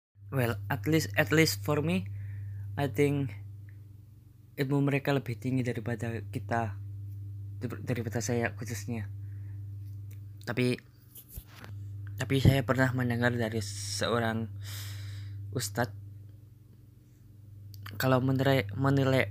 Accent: native